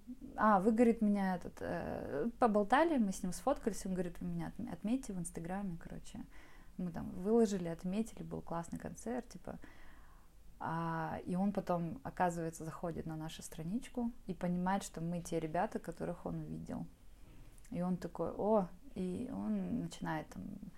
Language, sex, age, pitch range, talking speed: Russian, female, 20-39, 165-205 Hz, 145 wpm